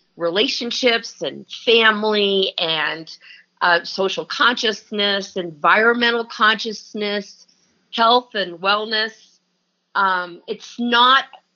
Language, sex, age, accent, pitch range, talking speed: English, female, 50-69, American, 175-225 Hz, 80 wpm